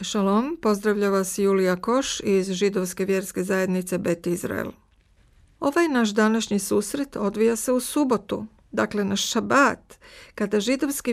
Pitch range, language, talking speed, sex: 195-240 Hz, Croatian, 130 wpm, female